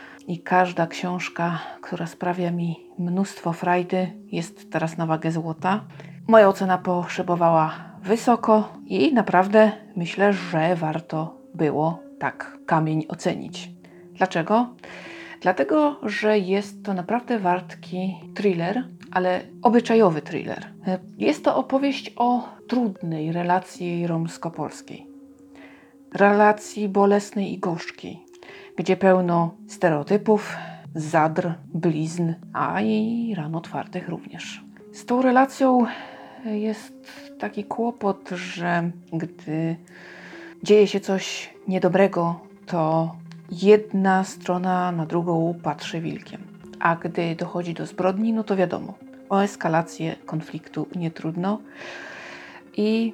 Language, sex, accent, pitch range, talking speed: Polish, female, native, 170-210 Hz, 105 wpm